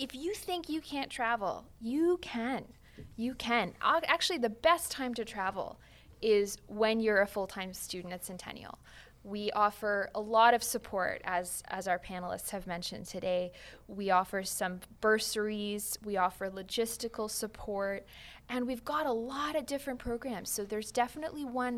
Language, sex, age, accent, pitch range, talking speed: English, female, 20-39, American, 200-245 Hz, 155 wpm